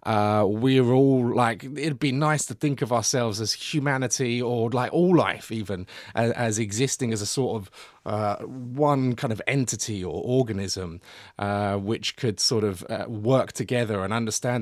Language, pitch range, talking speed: English, 105-130 Hz, 170 wpm